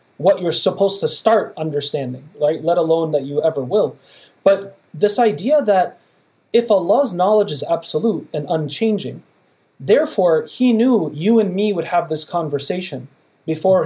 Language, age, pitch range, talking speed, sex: English, 30-49, 150-190 Hz, 150 wpm, male